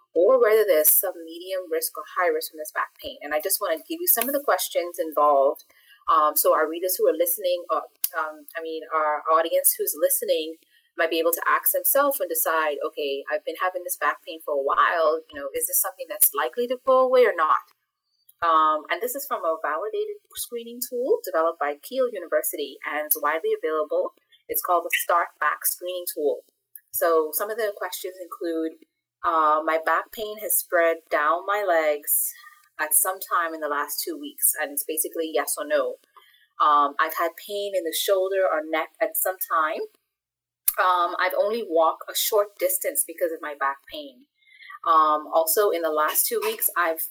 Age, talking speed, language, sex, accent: 30-49, 195 wpm, English, female, American